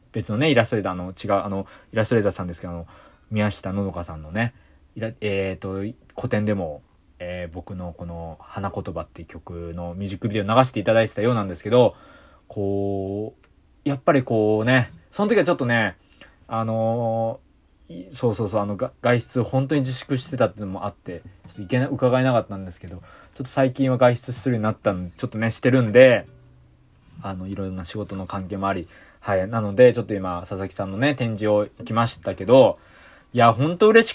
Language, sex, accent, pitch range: Japanese, male, native, 95-125 Hz